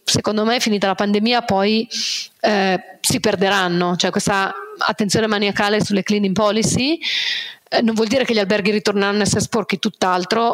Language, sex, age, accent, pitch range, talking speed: Italian, female, 30-49, native, 195-225 Hz, 155 wpm